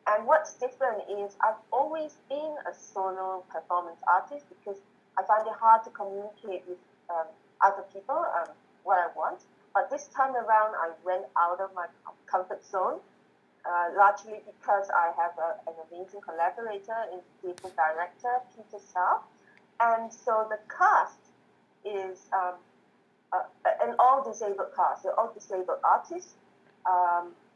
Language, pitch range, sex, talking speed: English, 180-225 Hz, female, 140 wpm